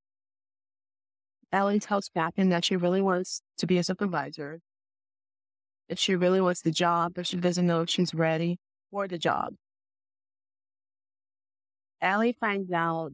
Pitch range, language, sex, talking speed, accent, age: 155-180 Hz, English, female, 135 wpm, American, 20-39